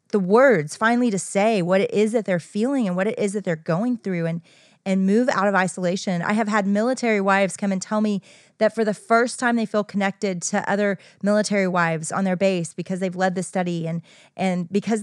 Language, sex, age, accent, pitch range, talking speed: English, female, 30-49, American, 180-230 Hz, 230 wpm